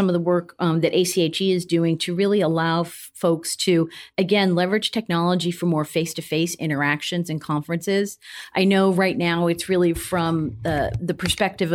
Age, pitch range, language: 40-59, 160-180 Hz, English